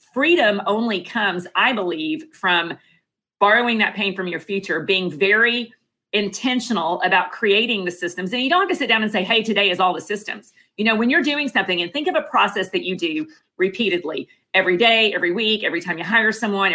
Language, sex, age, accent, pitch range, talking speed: English, female, 40-59, American, 180-235 Hz, 210 wpm